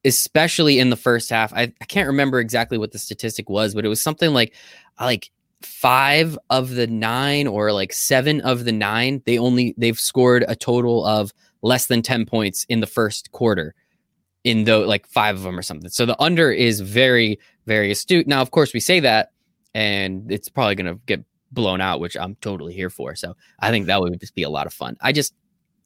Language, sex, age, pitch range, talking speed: English, male, 20-39, 110-155 Hz, 215 wpm